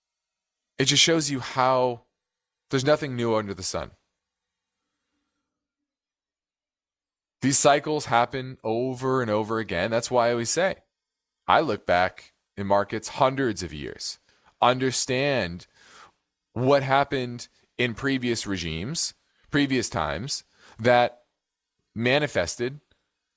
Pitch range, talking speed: 110-150 Hz, 105 wpm